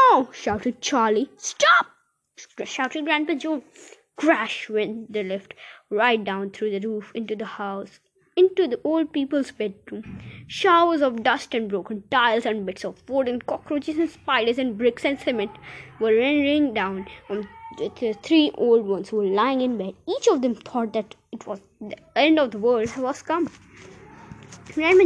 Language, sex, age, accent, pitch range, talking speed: Hindi, female, 20-39, native, 215-335 Hz, 170 wpm